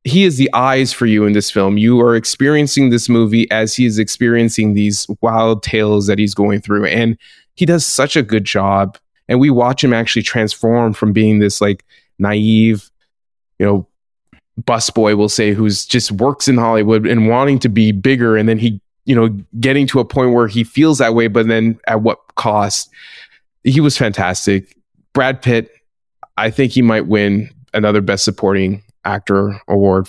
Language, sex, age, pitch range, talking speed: English, male, 20-39, 105-120 Hz, 185 wpm